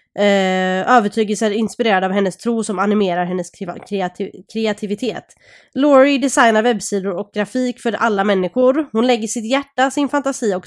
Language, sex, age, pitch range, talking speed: Swedish, female, 20-39, 190-235 Hz, 145 wpm